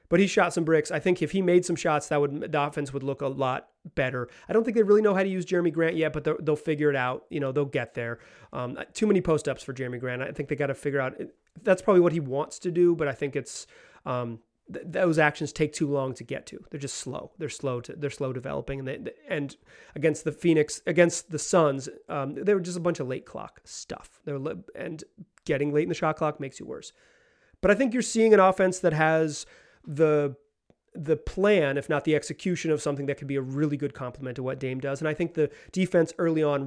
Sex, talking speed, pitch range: male, 255 wpm, 140-170 Hz